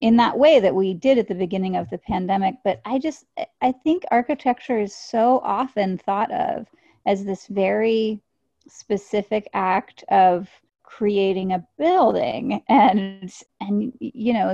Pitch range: 190-250 Hz